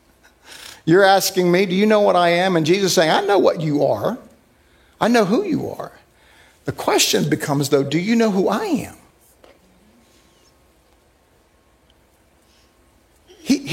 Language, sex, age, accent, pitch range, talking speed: English, male, 50-69, American, 150-190 Hz, 150 wpm